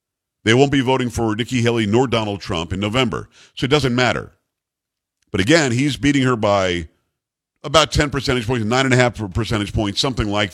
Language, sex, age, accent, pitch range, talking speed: English, male, 50-69, American, 105-135 Hz, 175 wpm